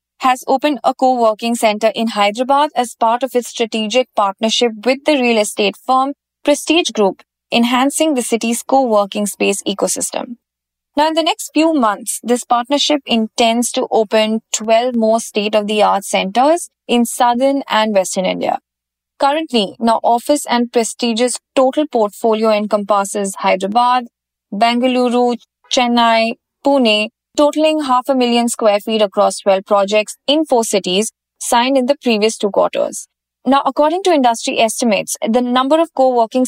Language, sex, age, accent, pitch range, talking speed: English, female, 20-39, Indian, 215-270 Hz, 140 wpm